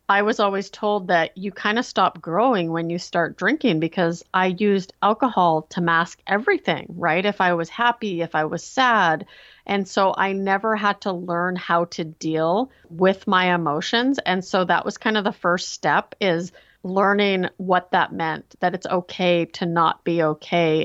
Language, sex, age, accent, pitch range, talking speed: English, female, 30-49, American, 170-200 Hz, 185 wpm